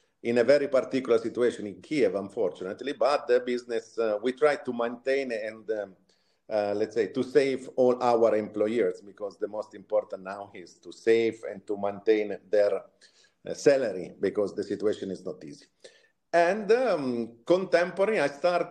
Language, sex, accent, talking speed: English, male, Italian, 160 wpm